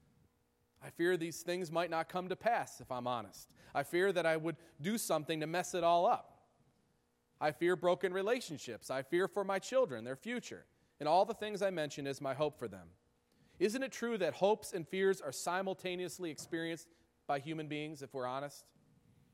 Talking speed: 190 wpm